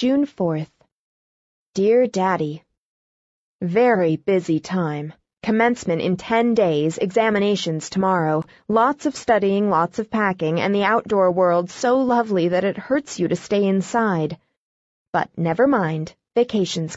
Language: Chinese